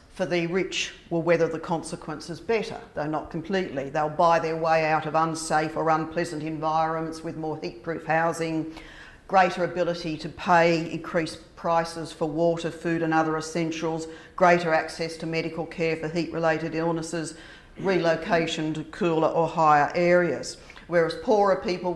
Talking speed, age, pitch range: 150 wpm, 50-69, 155-175 Hz